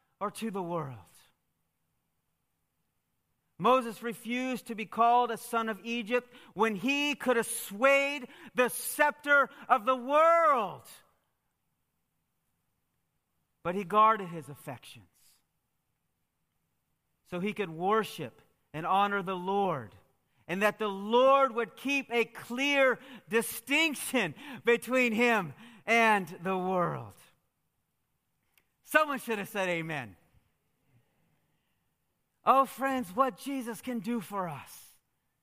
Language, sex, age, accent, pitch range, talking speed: English, male, 40-59, American, 190-275 Hz, 105 wpm